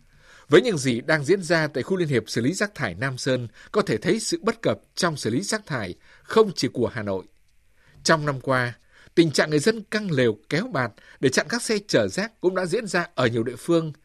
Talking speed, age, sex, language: 245 wpm, 60-79, male, Vietnamese